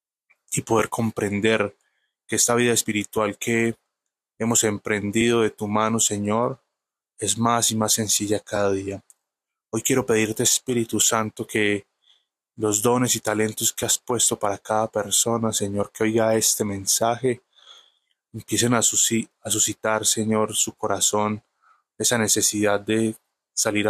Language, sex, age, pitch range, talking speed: Spanish, male, 20-39, 105-115 Hz, 135 wpm